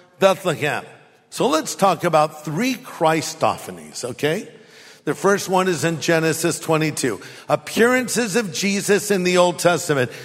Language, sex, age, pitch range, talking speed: English, male, 50-69, 150-185 Hz, 130 wpm